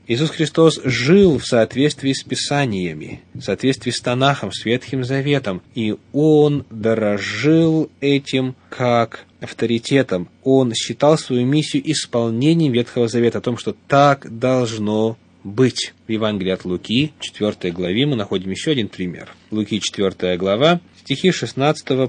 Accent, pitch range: native, 110-140 Hz